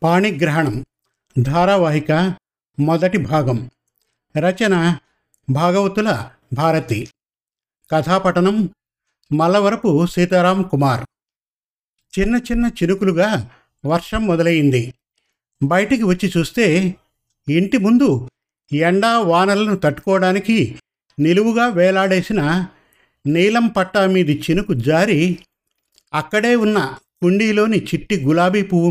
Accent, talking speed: native, 75 wpm